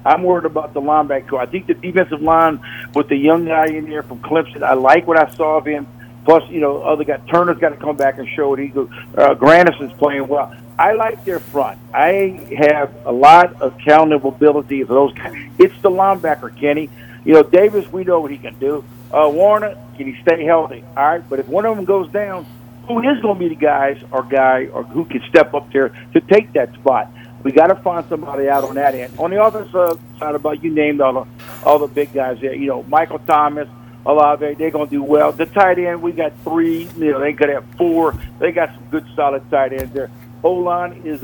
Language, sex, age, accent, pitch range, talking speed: English, male, 50-69, American, 135-165 Hz, 230 wpm